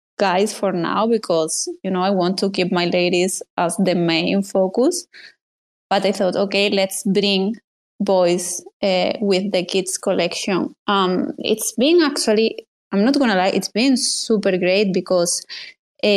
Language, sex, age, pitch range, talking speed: English, female, 20-39, 190-240 Hz, 150 wpm